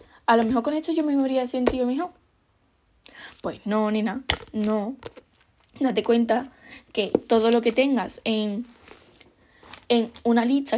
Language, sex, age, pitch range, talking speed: Spanish, female, 10-29, 215-265 Hz, 140 wpm